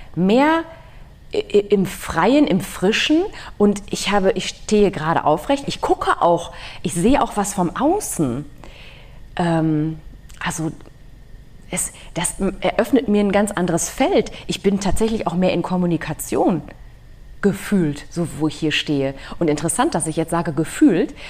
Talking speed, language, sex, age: 145 wpm, German, female, 30-49